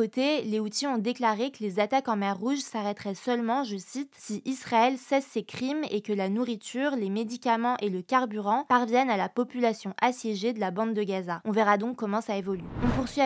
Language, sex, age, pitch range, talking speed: French, female, 20-39, 210-250 Hz, 210 wpm